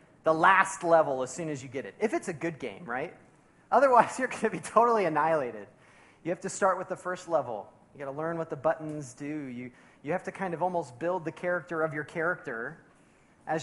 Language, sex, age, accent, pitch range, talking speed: English, male, 30-49, American, 140-195 Hz, 220 wpm